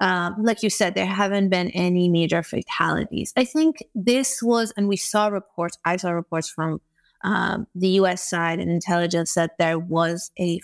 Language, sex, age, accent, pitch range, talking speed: English, female, 30-49, American, 170-210 Hz, 180 wpm